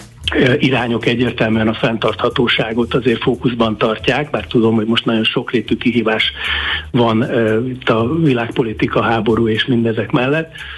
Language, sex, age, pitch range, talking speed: Hungarian, male, 60-79, 115-130 Hz, 135 wpm